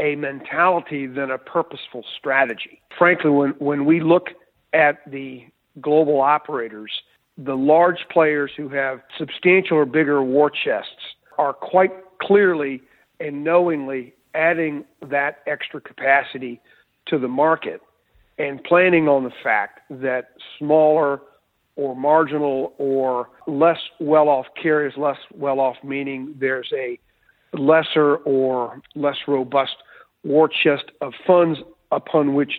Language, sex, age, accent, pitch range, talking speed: English, male, 50-69, American, 135-155 Hz, 125 wpm